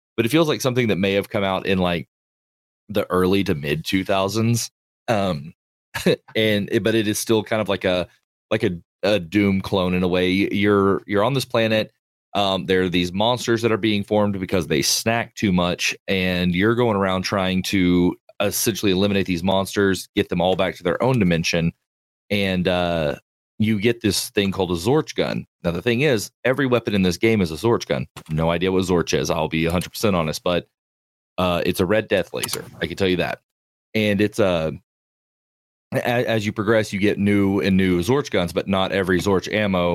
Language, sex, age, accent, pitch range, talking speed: English, male, 30-49, American, 90-105 Hz, 205 wpm